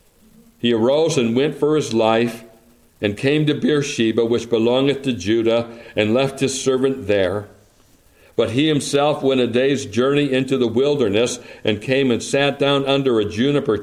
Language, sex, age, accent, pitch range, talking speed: English, male, 60-79, American, 110-140 Hz, 165 wpm